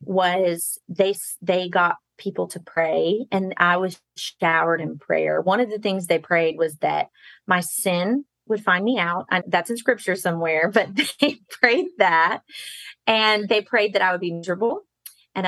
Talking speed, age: 170 wpm, 30-49